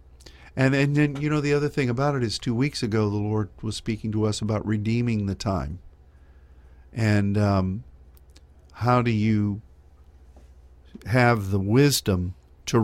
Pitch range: 70-115 Hz